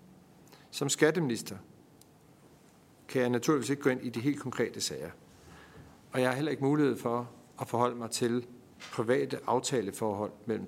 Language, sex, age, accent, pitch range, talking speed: Danish, male, 50-69, native, 120-140 Hz, 150 wpm